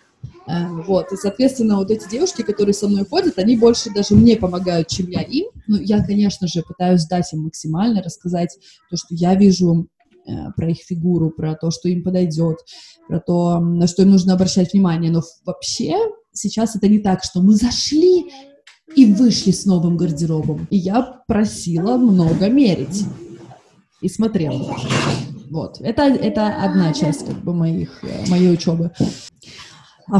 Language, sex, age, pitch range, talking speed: Russian, female, 20-39, 170-210 Hz, 155 wpm